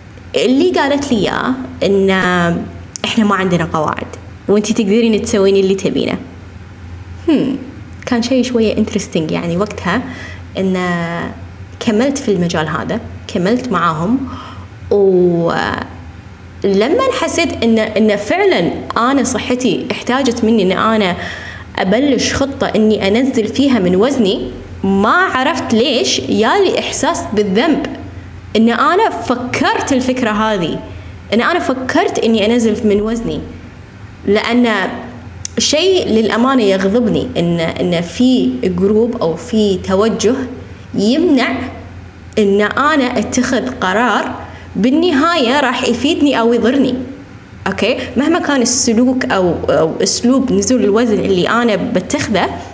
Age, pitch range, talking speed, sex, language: 20-39, 190-255 Hz, 110 wpm, female, Arabic